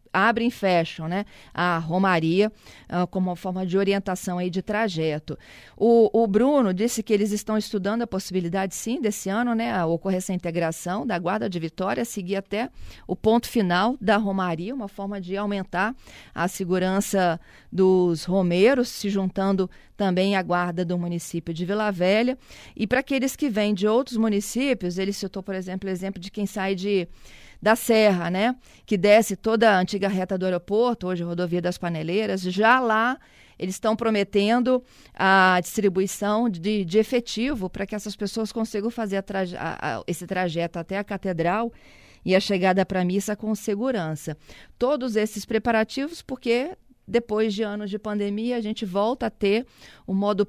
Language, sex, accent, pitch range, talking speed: Portuguese, female, Brazilian, 185-220 Hz, 170 wpm